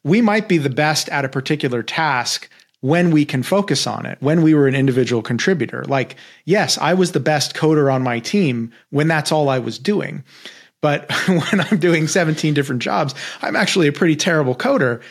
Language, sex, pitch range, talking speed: English, male, 125-155 Hz, 200 wpm